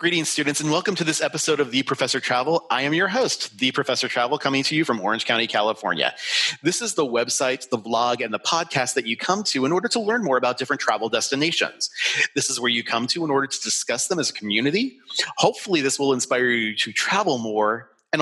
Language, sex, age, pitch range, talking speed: English, male, 30-49, 120-160 Hz, 230 wpm